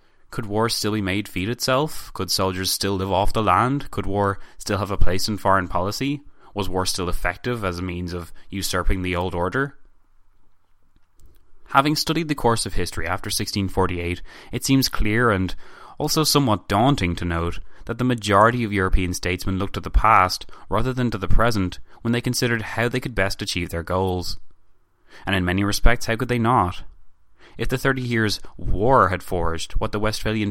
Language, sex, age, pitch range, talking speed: English, male, 20-39, 90-110 Hz, 185 wpm